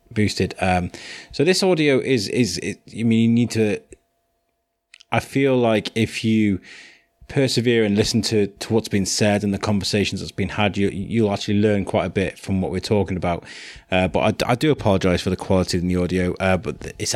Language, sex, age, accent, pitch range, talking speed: English, male, 20-39, British, 95-115 Hz, 205 wpm